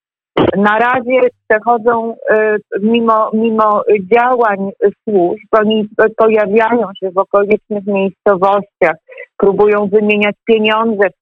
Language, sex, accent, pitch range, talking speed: Polish, female, native, 175-220 Hz, 90 wpm